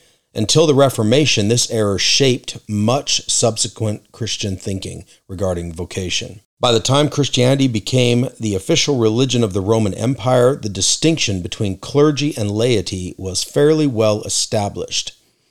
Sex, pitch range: male, 100-130 Hz